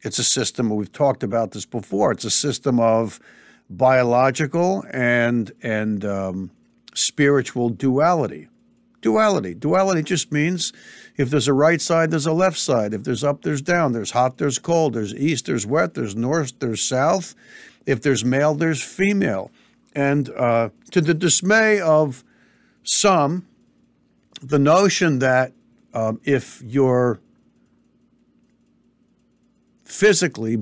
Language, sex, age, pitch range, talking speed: English, male, 60-79, 120-175 Hz, 130 wpm